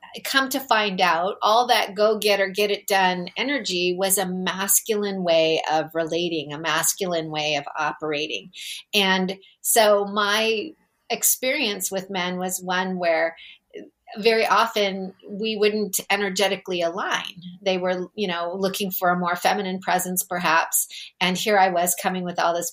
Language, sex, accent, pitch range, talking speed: English, female, American, 175-205 Hz, 155 wpm